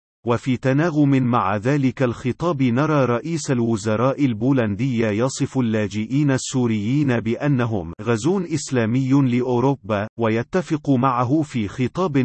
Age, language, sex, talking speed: 40-59, Arabic, male, 100 wpm